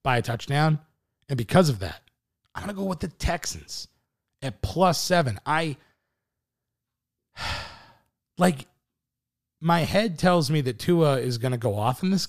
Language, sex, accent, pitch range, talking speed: English, male, American, 120-145 Hz, 155 wpm